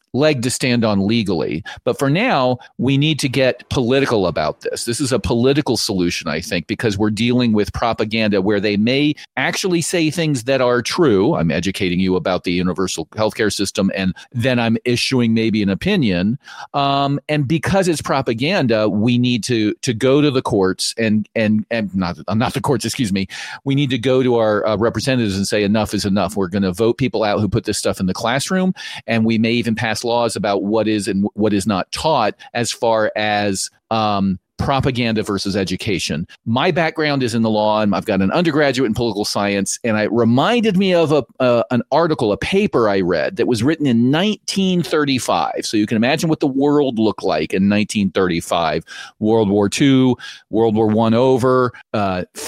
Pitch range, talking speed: 105-135 Hz, 195 wpm